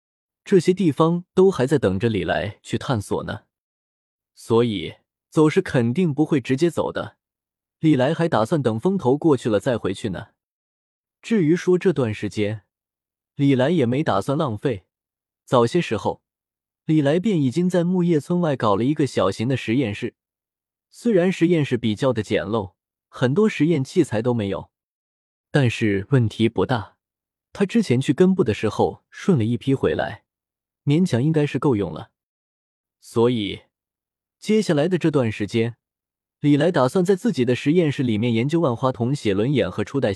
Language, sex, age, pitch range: Chinese, male, 20-39, 110-165 Hz